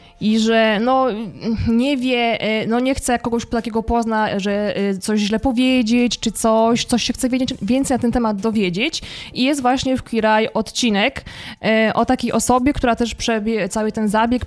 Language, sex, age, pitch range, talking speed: Polish, female, 20-39, 205-245 Hz, 175 wpm